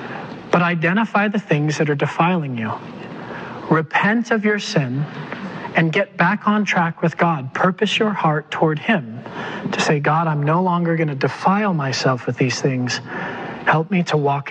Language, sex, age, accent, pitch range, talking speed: English, male, 40-59, American, 145-180 Hz, 165 wpm